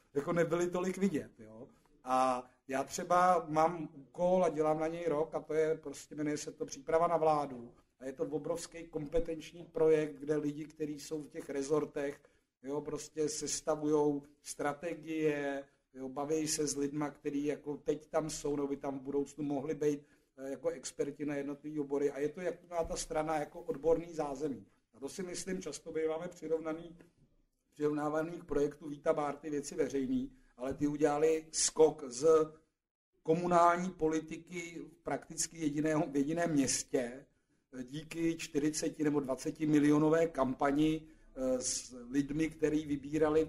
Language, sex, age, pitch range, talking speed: Czech, male, 50-69, 145-160 Hz, 150 wpm